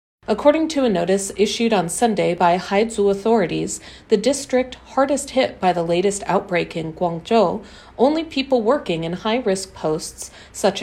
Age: 40-59